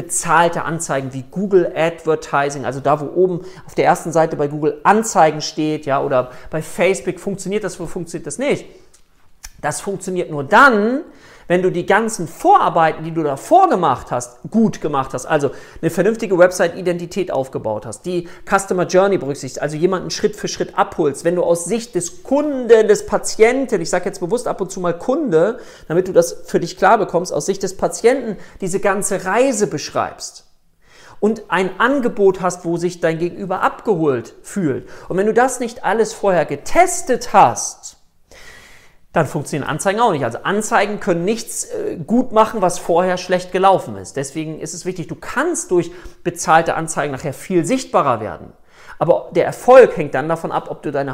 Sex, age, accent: male, 40-59, German